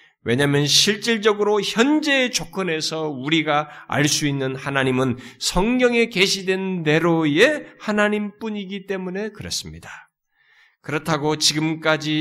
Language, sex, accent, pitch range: Korean, male, native, 145-205 Hz